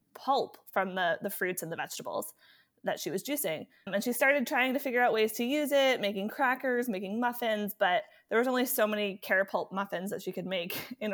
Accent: American